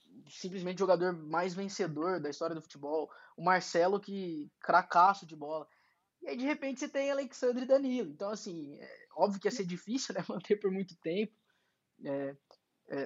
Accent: Brazilian